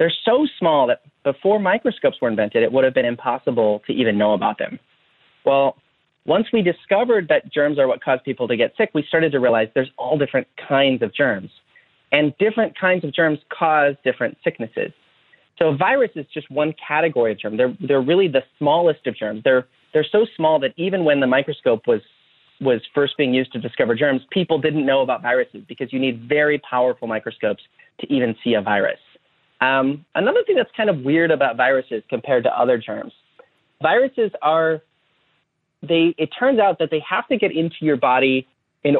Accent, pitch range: American, 130-180 Hz